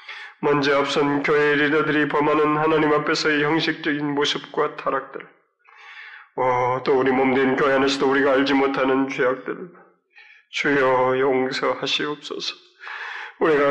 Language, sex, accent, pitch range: Korean, male, native, 140-155 Hz